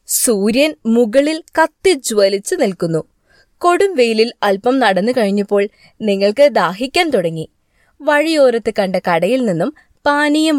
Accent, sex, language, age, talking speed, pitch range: native, female, Malayalam, 20-39, 90 wpm, 205-280 Hz